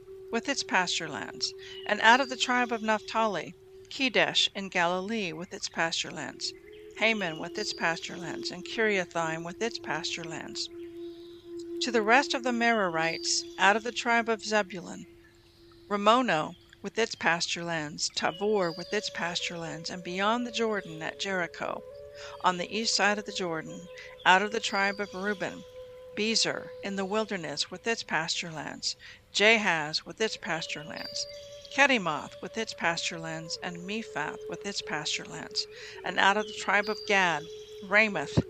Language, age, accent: English, 50-69, American